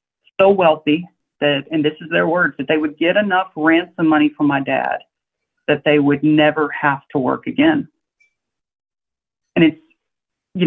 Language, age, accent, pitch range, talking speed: English, 40-59, American, 150-210 Hz, 155 wpm